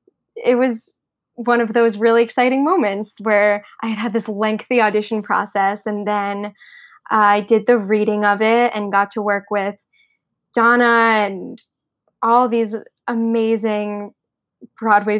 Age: 10-29